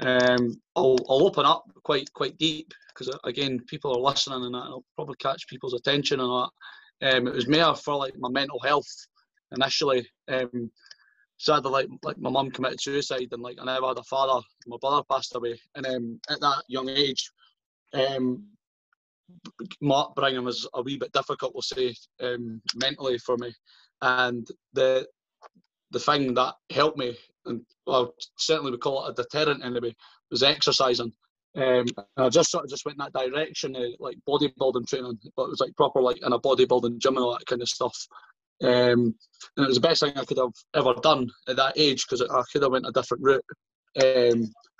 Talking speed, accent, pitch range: 195 wpm, British, 125-145 Hz